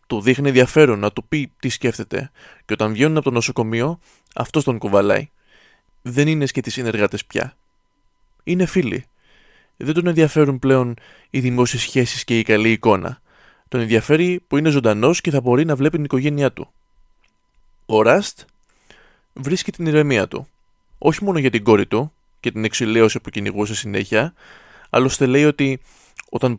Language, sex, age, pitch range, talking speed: Greek, male, 20-39, 110-140 Hz, 160 wpm